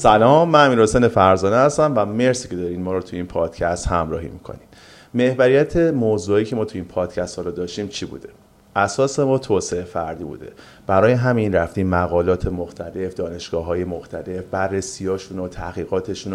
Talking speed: 160 wpm